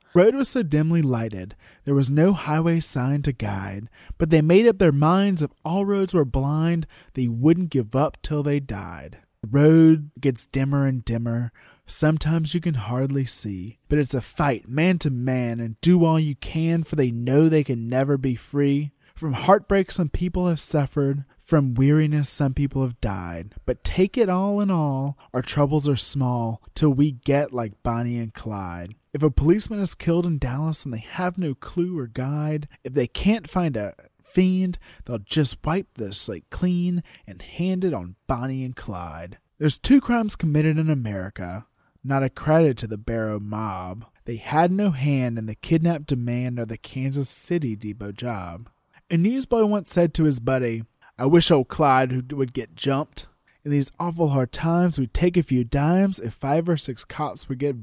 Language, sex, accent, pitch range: English, male, American, 120-165 Hz